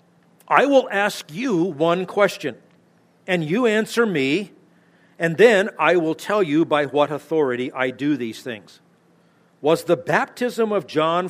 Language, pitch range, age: English, 135-180 Hz, 50-69